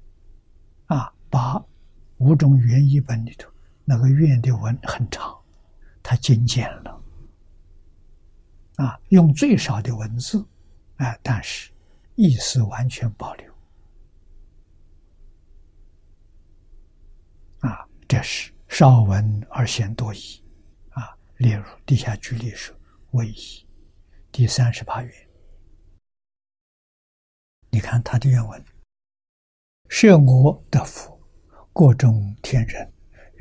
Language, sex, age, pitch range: Chinese, male, 60-79, 80-125 Hz